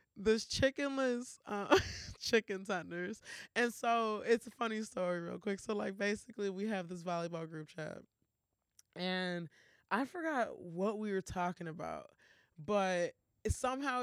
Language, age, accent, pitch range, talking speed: English, 20-39, American, 160-220 Hz, 130 wpm